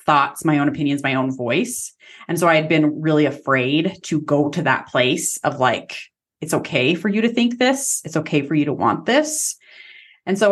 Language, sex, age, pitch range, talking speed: English, female, 30-49, 145-180 Hz, 205 wpm